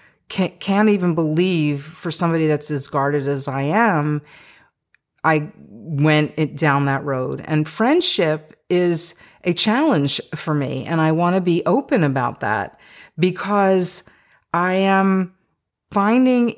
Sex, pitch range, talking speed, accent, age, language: female, 150-190 Hz, 125 wpm, American, 40-59, English